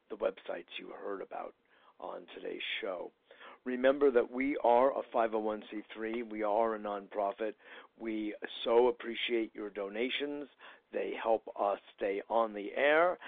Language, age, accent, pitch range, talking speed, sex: English, 60-79, American, 100-120 Hz, 135 wpm, male